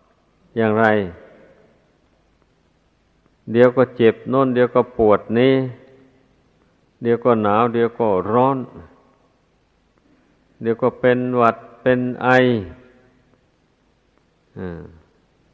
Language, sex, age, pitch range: Thai, male, 50-69, 110-125 Hz